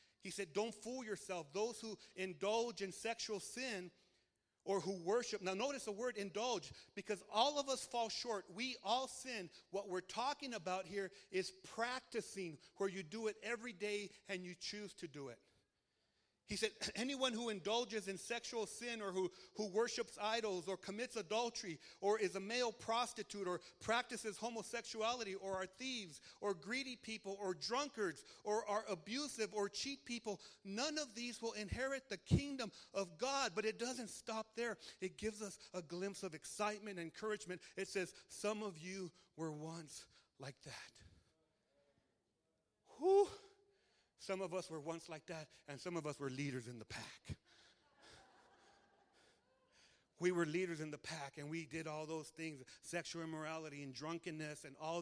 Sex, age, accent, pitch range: male, 40-59, American, 175-225 Hz